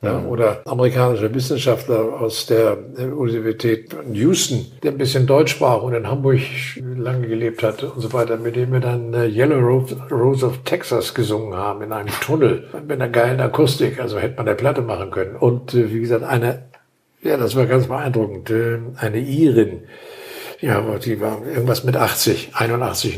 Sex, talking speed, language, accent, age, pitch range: male, 165 wpm, German, German, 60-79, 110-130 Hz